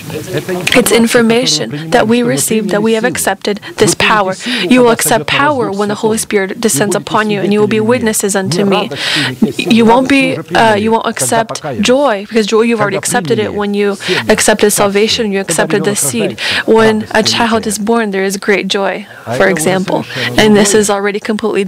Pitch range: 200-235 Hz